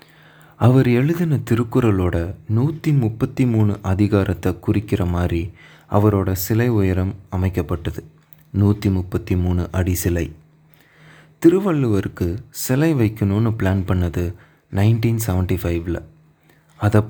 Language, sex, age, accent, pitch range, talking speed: Tamil, male, 30-49, native, 90-125 Hz, 85 wpm